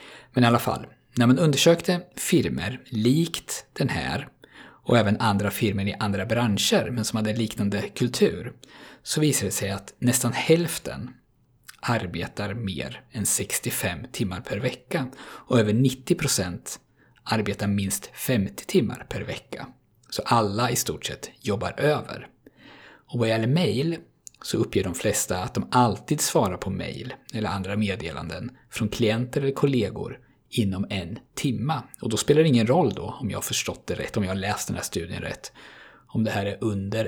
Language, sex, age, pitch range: Swedish, male, 50-69, 100-130 Hz